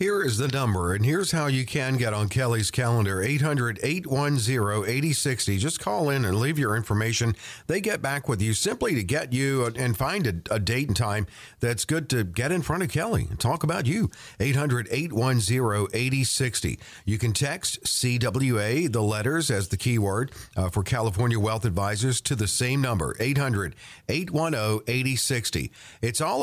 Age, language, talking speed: 50-69, English, 165 wpm